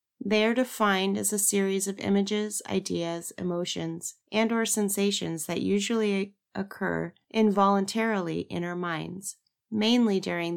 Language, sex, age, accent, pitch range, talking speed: English, female, 30-49, American, 175-225 Hz, 125 wpm